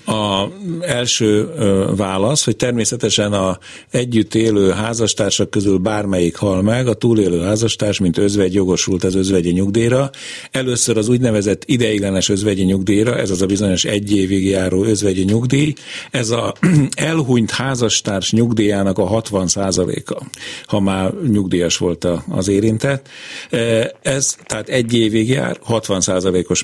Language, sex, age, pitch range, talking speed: Hungarian, male, 50-69, 100-125 Hz, 130 wpm